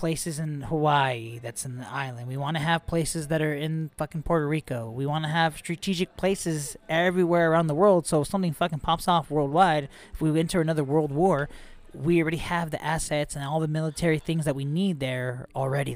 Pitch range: 130-170 Hz